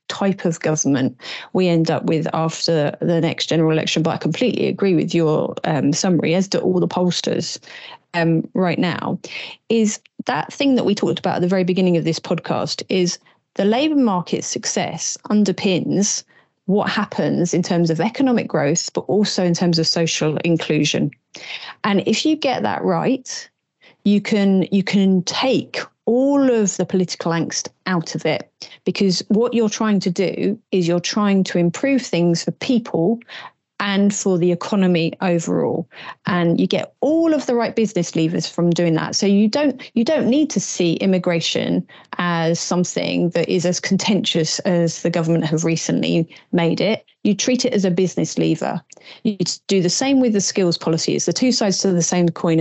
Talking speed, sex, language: 175 wpm, female, English